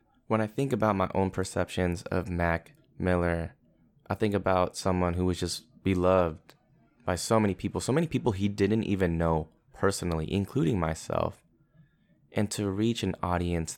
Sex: male